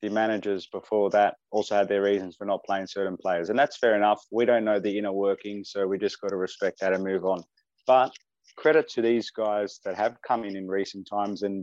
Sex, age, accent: male, 20-39, Australian